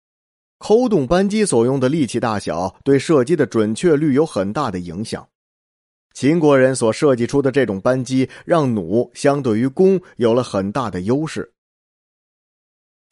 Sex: male